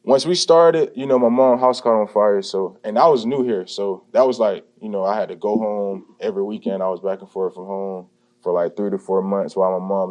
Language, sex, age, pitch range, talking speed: English, male, 20-39, 100-140 Hz, 275 wpm